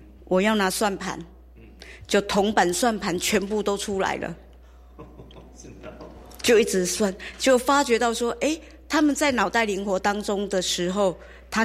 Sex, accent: female, American